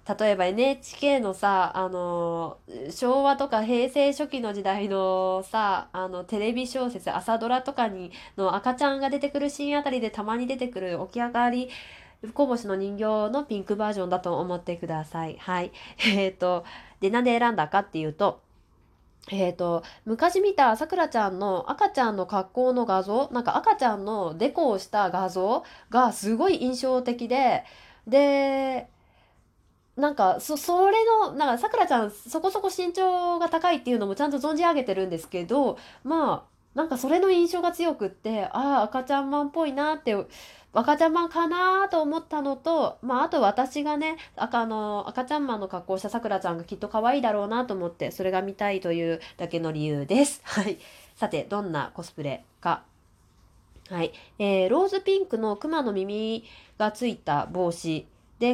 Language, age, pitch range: Japanese, 20-39, 190-280 Hz